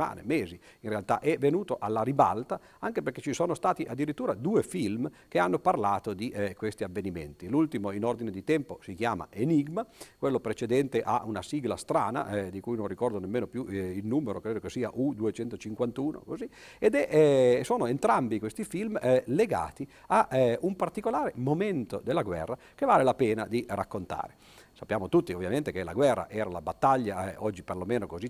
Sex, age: male, 50-69